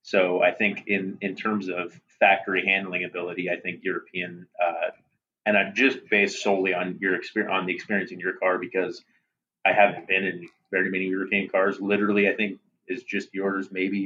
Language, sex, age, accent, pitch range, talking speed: English, male, 30-49, American, 90-100 Hz, 190 wpm